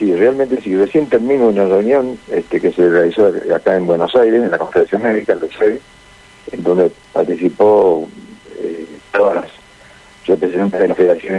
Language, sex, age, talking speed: Spanish, male, 60-79, 150 wpm